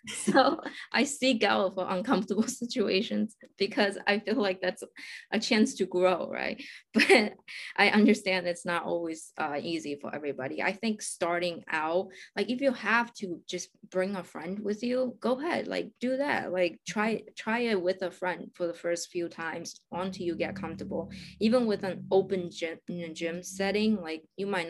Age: 20-39